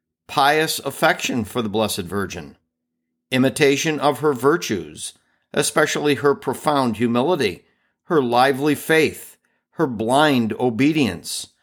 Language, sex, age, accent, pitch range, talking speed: English, male, 50-69, American, 120-170 Hz, 105 wpm